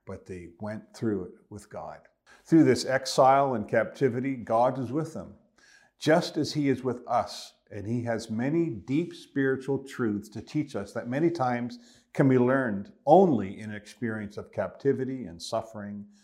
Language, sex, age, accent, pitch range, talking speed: English, male, 50-69, American, 105-130 Hz, 170 wpm